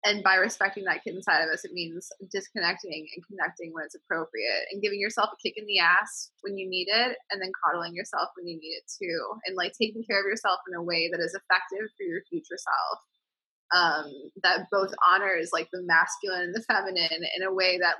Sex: female